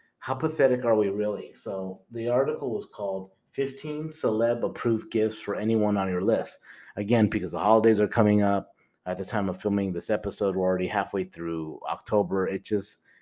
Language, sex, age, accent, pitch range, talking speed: English, male, 30-49, American, 95-115 Hz, 180 wpm